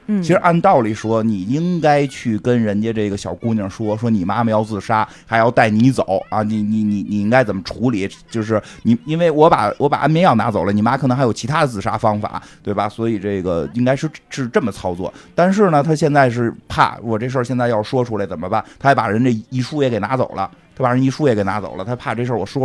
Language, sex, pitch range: Chinese, male, 105-140 Hz